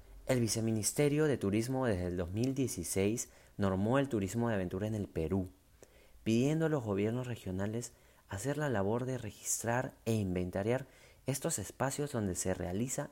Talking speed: 145 wpm